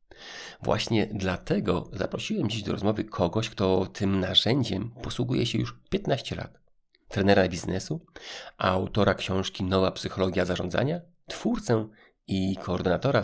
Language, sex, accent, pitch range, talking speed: Polish, male, native, 95-120 Hz, 115 wpm